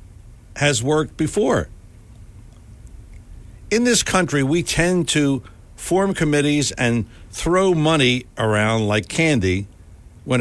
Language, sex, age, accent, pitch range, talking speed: English, male, 60-79, American, 95-135 Hz, 105 wpm